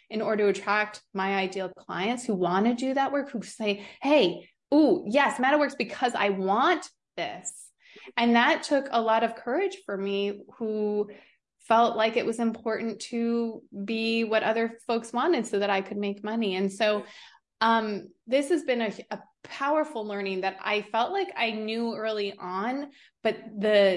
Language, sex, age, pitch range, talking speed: English, female, 20-39, 195-235 Hz, 175 wpm